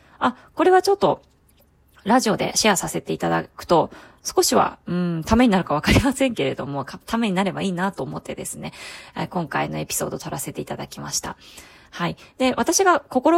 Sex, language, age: female, Japanese, 20-39